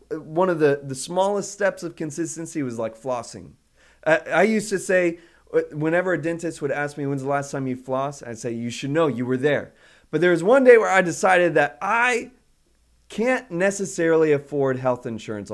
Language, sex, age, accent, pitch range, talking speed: English, male, 20-39, American, 135-180 Hz, 195 wpm